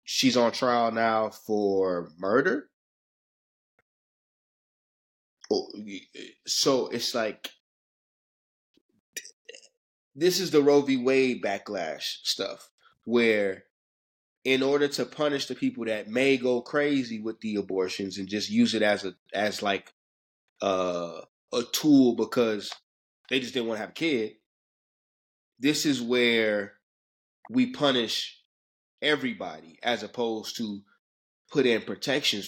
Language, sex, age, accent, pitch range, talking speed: English, male, 20-39, American, 95-125 Hz, 115 wpm